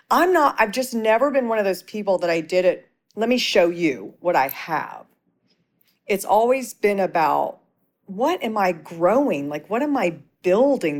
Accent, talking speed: American, 185 wpm